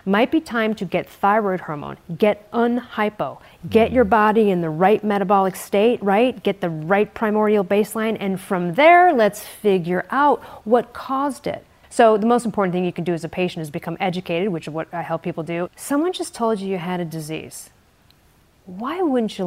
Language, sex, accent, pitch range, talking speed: English, female, American, 175-220 Hz, 195 wpm